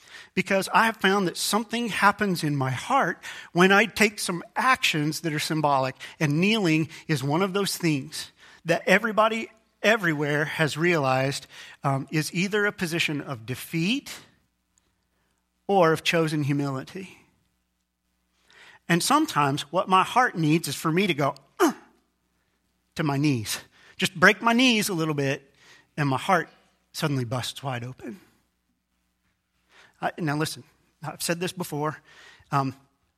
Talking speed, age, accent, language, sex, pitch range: 140 wpm, 40-59, American, English, male, 125-180 Hz